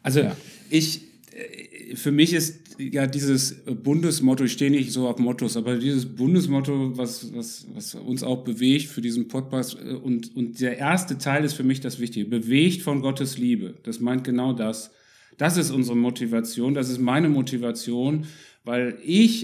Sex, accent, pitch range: male, German, 125-150 Hz